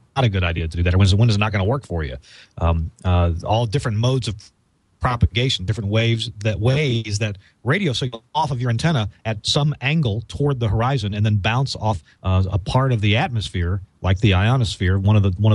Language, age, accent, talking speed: English, 40-59, American, 230 wpm